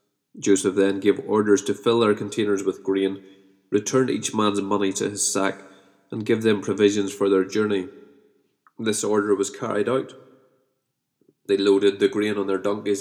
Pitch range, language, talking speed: 100-115 Hz, English, 165 wpm